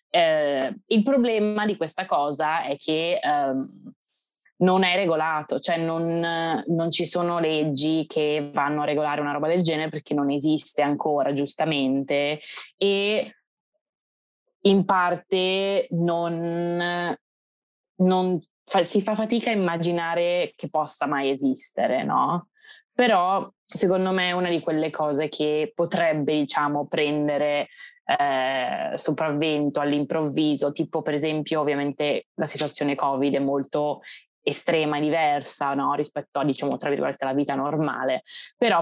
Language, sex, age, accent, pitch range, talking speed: Italian, female, 20-39, native, 145-185 Hz, 130 wpm